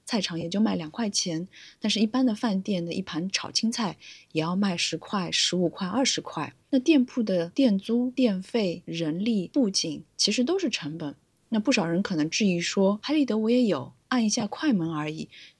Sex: female